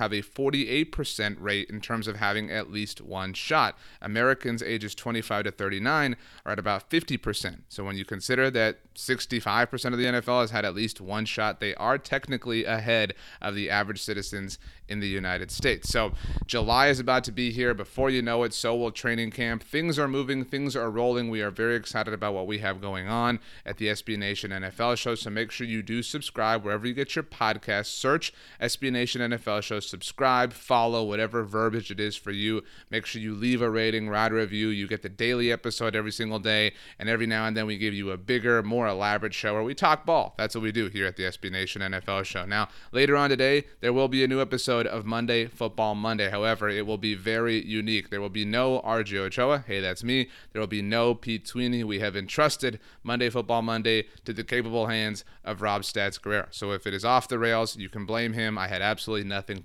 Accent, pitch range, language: American, 105-120 Hz, English